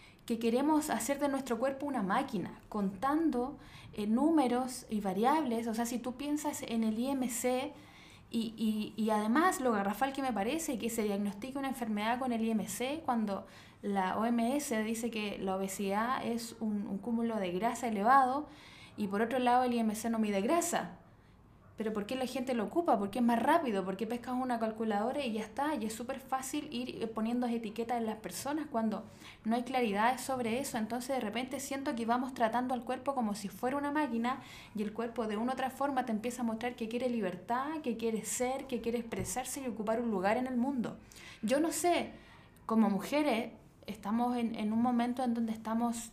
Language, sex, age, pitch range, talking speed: Spanish, female, 10-29, 220-260 Hz, 195 wpm